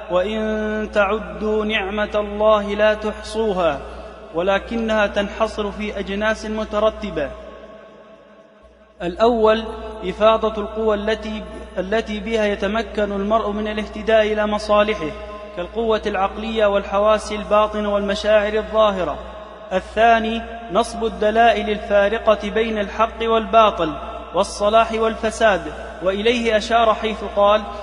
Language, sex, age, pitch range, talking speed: Arabic, male, 30-49, 210-220 Hz, 90 wpm